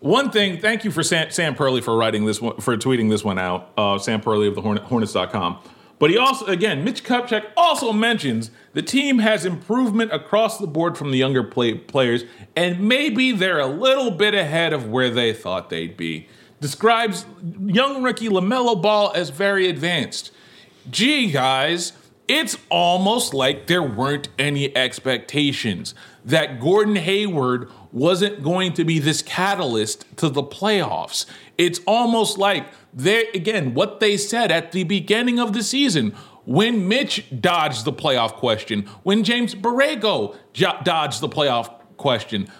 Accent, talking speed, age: American, 160 wpm, 40-59